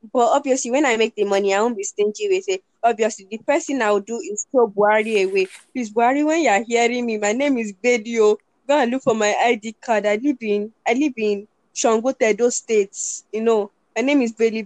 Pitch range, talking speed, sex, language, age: 210-255 Hz, 225 wpm, female, English, 10-29